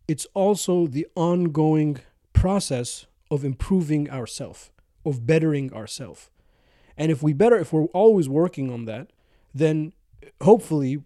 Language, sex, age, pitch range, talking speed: English, male, 30-49, 135-170 Hz, 125 wpm